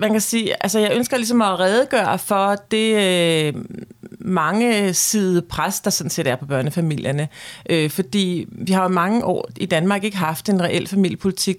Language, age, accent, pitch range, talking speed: Danish, 40-59, native, 170-215 Hz, 180 wpm